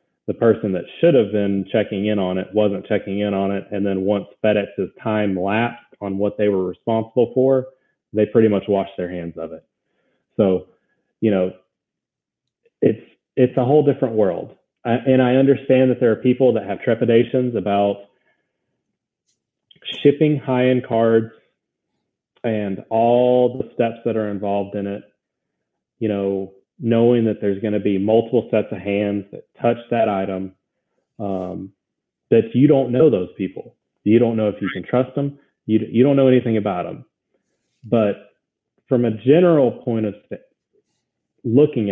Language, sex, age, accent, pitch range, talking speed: English, male, 30-49, American, 100-130 Hz, 160 wpm